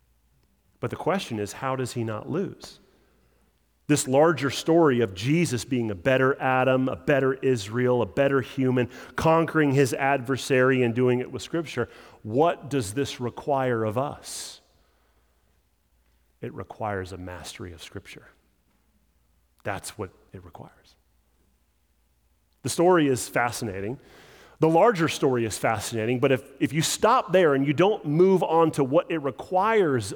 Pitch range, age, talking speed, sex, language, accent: 115-155 Hz, 30-49, 145 wpm, male, English, American